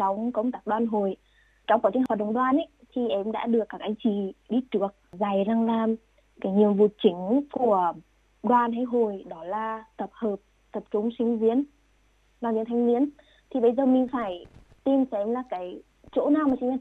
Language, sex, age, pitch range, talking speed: Vietnamese, female, 20-39, 210-250 Hz, 205 wpm